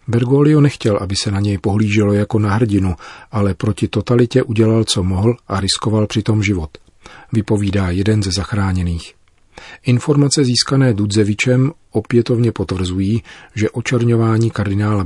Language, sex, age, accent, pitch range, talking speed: Czech, male, 40-59, native, 95-110 Hz, 130 wpm